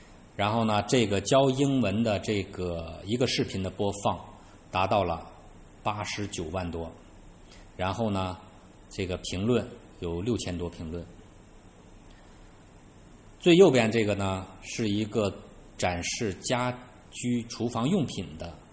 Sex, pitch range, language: male, 90-105 Hz, Chinese